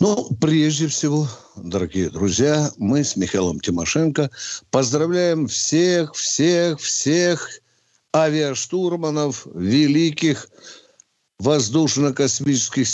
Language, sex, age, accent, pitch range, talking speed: Russian, male, 60-79, native, 140-185 Hz, 65 wpm